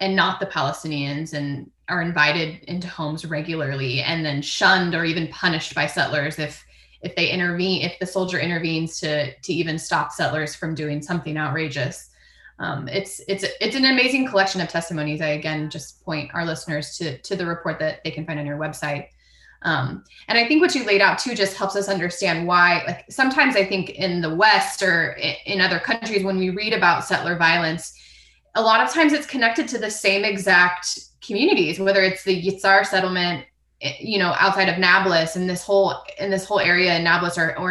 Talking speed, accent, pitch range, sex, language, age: 195 wpm, American, 165-200 Hz, female, English, 20-39